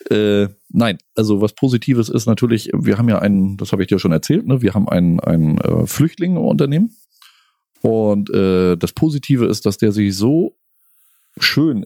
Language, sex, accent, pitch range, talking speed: German, male, German, 105-130 Hz, 170 wpm